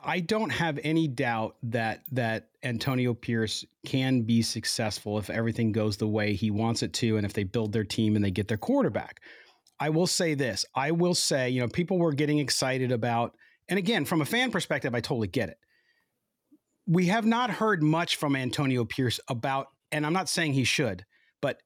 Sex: male